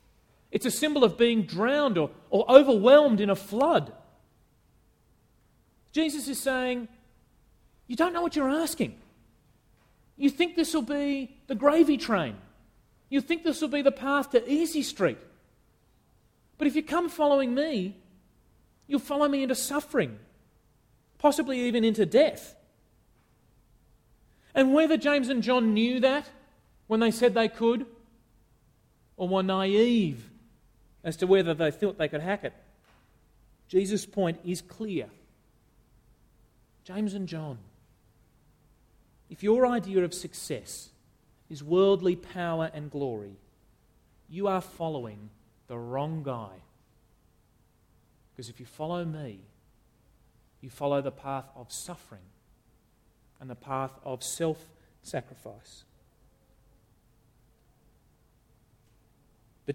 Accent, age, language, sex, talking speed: Australian, 30-49, English, male, 120 wpm